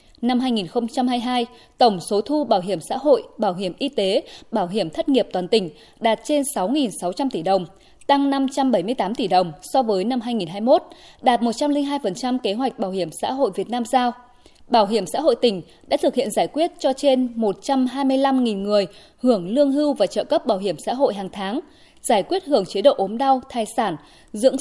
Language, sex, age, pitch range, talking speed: Vietnamese, female, 20-39, 210-285 Hz, 195 wpm